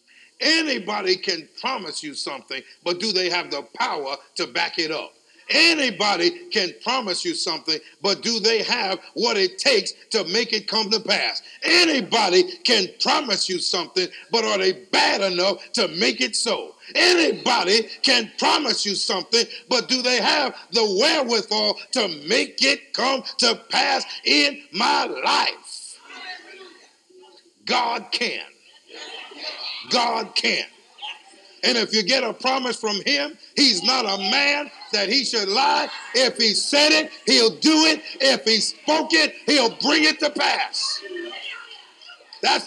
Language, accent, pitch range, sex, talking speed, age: English, American, 220-360 Hz, male, 145 wpm, 50-69